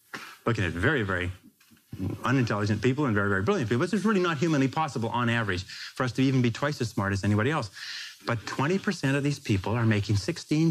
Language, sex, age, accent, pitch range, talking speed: English, male, 30-49, American, 110-145 Hz, 215 wpm